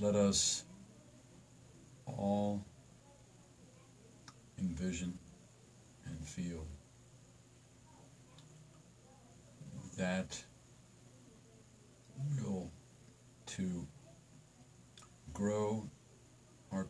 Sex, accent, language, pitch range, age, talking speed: male, American, English, 90-130 Hz, 50-69, 40 wpm